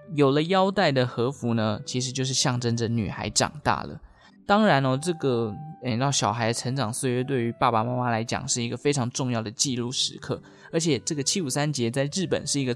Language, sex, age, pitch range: Chinese, male, 20-39, 115-150 Hz